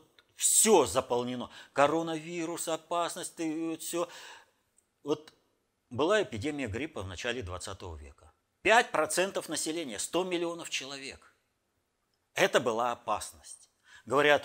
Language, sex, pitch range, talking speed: Russian, male, 105-165 Hz, 90 wpm